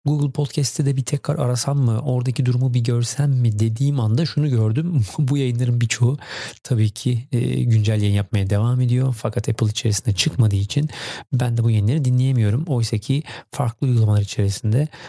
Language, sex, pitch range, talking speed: Turkish, male, 115-135 Hz, 165 wpm